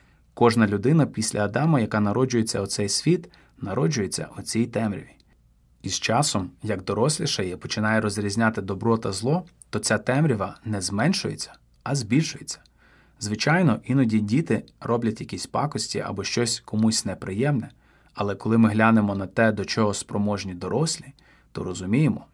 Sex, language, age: male, Ukrainian, 30-49